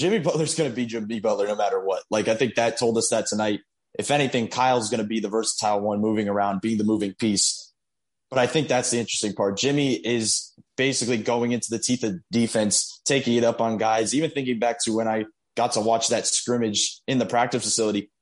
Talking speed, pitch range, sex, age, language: 225 wpm, 110-130 Hz, male, 20-39, English